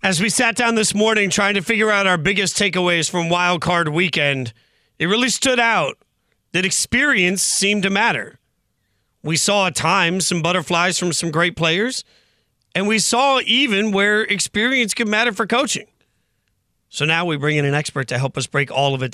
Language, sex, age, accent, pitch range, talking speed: English, male, 40-59, American, 150-195 Hz, 190 wpm